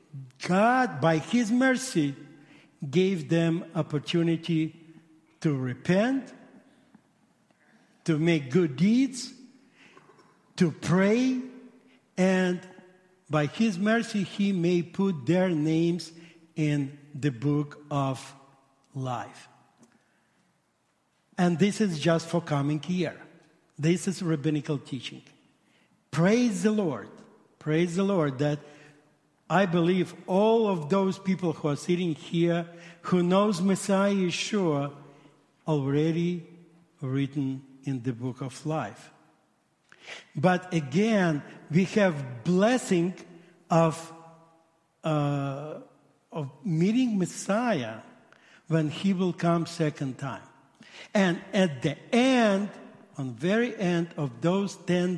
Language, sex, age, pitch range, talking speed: English, male, 50-69, 150-190 Hz, 105 wpm